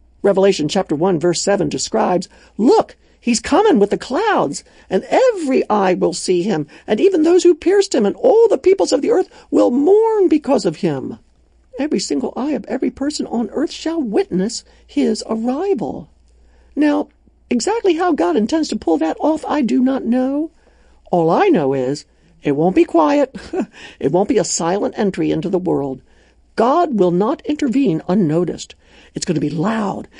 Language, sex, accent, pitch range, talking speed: English, male, American, 185-305 Hz, 175 wpm